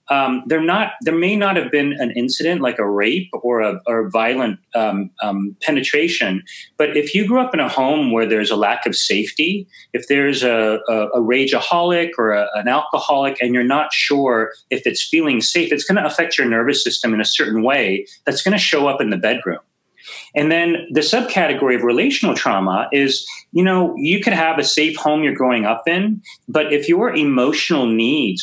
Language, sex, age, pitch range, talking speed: English, male, 30-49, 115-170 Hz, 205 wpm